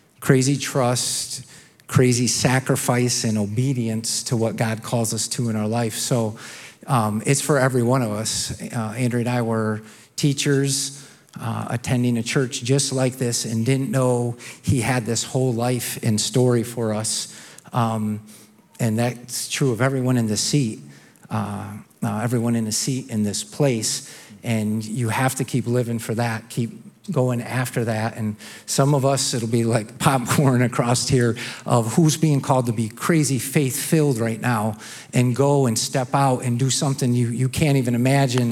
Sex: male